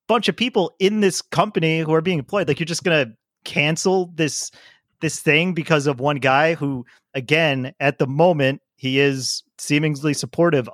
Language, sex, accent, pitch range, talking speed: English, male, American, 135-170 Hz, 175 wpm